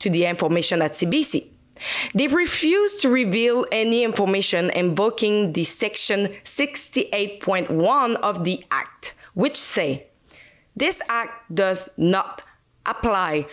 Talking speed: 110 wpm